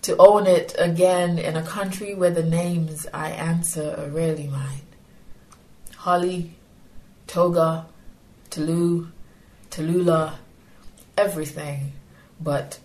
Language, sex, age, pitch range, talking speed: English, female, 30-49, 155-180 Hz, 100 wpm